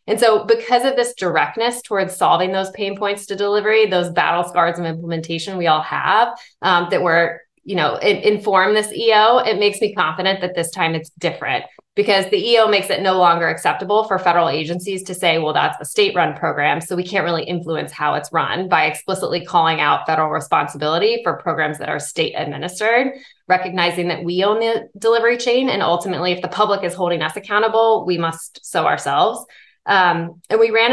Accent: American